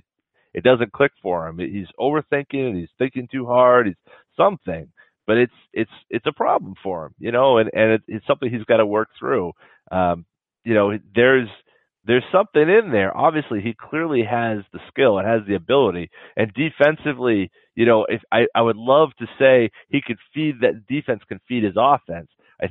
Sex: male